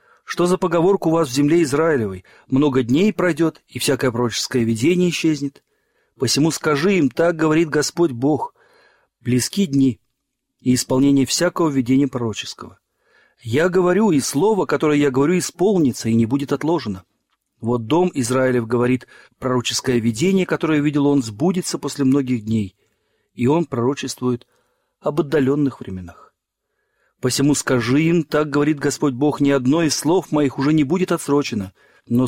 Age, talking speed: 40-59, 145 wpm